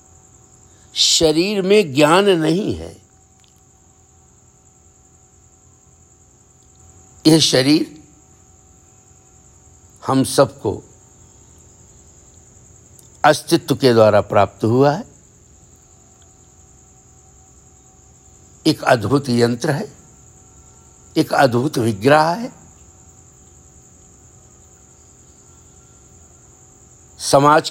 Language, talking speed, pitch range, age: Hindi, 50 wpm, 110-160 Hz, 60-79